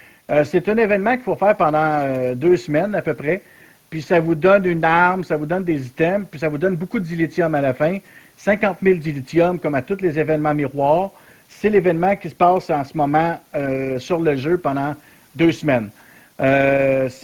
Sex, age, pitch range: male, 50-69, 155-195 Hz